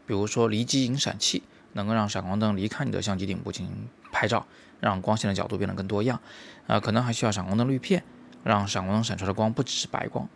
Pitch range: 100-115 Hz